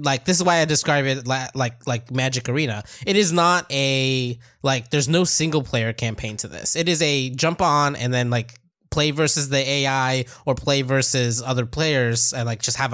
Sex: male